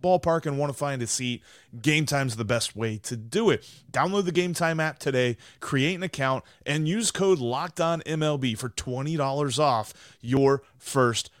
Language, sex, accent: English, male, American